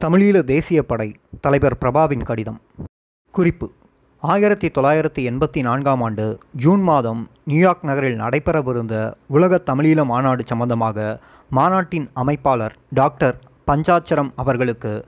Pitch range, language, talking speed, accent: 120-160 Hz, Tamil, 105 wpm, native